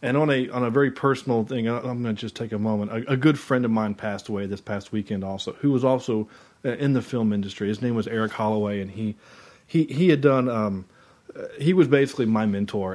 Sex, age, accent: male, 30-49, American